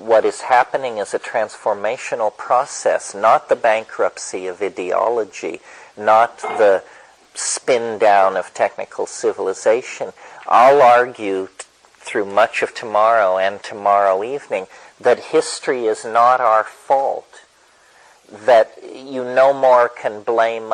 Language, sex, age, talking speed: English, male, 50-69, 115 wpm